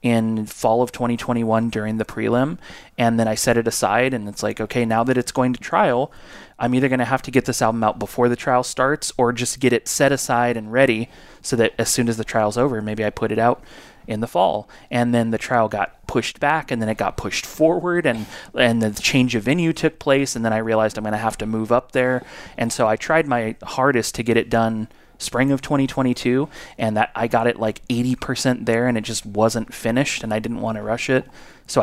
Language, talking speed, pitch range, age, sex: English, 240 wpm, 110-125 Hz, 30-49, male